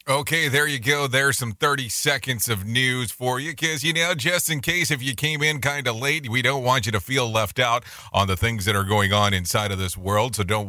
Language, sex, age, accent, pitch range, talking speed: English, male, 30-49, American, 100-135 Hz, 260 wpm